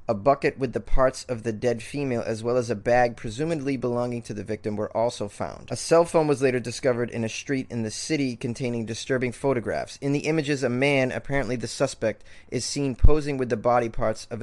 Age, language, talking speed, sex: 20-39, English, 220 wpm, male